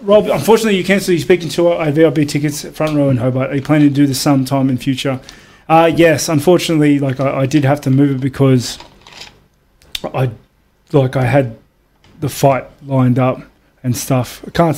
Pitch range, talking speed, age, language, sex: 130-155 Hz, 190 wpm, 20-39, English, male